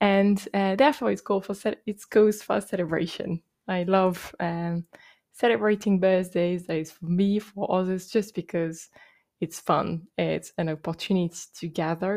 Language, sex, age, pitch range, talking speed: English, female, 20-39, 175-210 Hz, 155 wpm